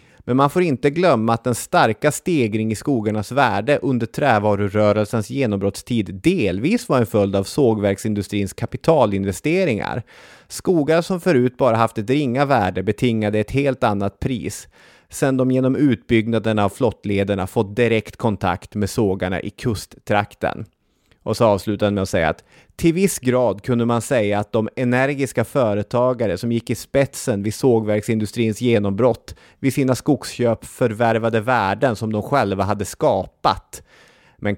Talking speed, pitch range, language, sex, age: 145 wpm, 105-130 Hz, Swedish, male, 30-49